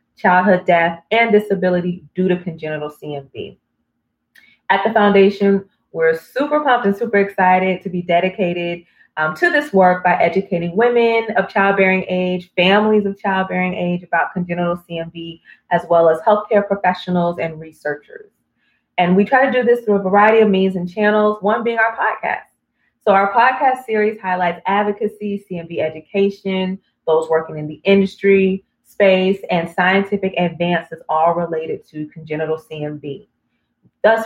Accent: American